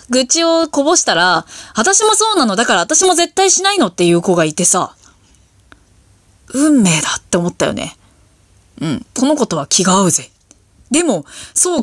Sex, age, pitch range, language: female, 20-39, 180-275 Hz, Japanese